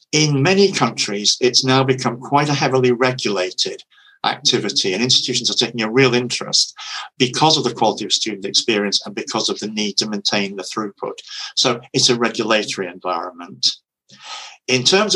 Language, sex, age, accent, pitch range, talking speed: English, male, 50-69, British, 110-135 Hz, 160 wpm